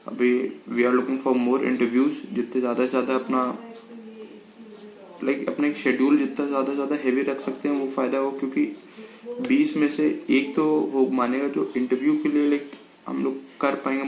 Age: 20-39